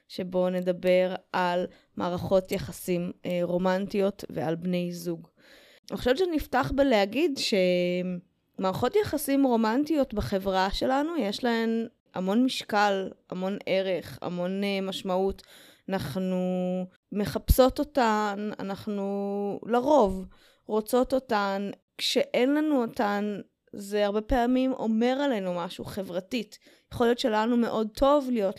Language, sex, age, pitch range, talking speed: Hebrew, female, 20-39, 190-250 Hz, 105 wpm